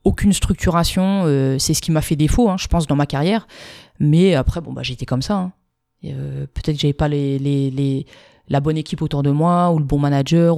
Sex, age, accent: female, 20-39, French